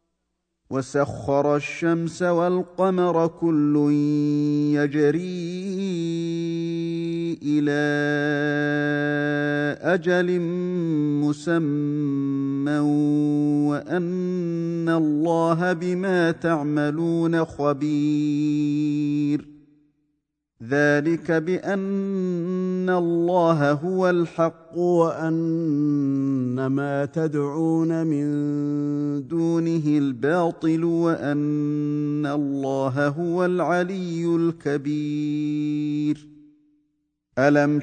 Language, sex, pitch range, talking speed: Arabic, male, 145-170 Hz, 50 wpm